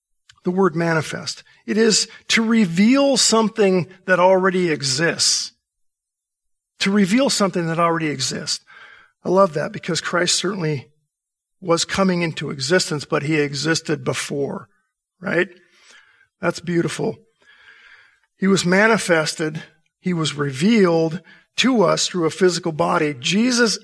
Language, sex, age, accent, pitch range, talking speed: English, male, 50-69, American, 155-205 Hz, 120 wpm